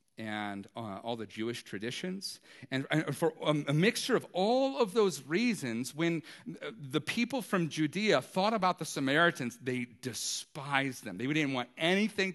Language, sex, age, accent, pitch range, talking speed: English, male, 40-59, American, 125-175 Hz, 160 wpm